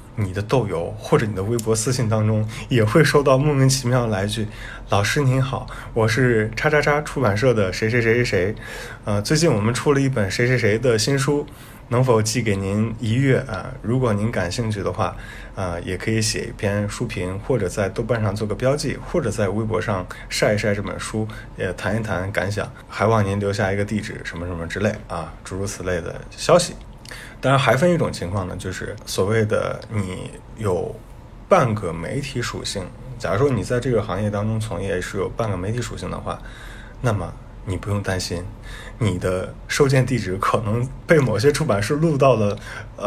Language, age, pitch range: Chinese, 20-39, 100-125 Hz